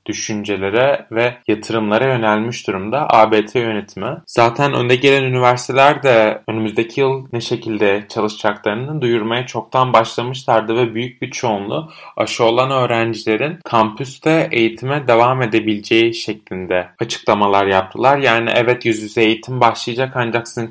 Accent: native